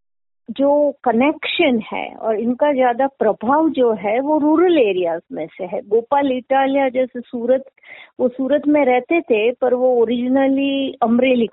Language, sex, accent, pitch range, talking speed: Hindi, female, native, 225-310 Hz, 145 wpm